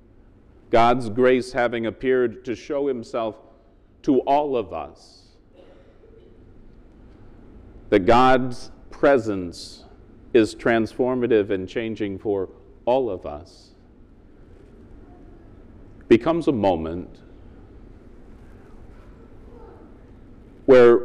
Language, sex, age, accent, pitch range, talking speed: English, male, 40-59, American, 100-140 Hz, 75 wpm